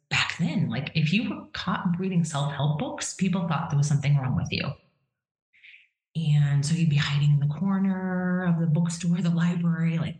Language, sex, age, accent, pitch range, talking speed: English, female, 30-49, American, 145-185 Hz, 190 wpm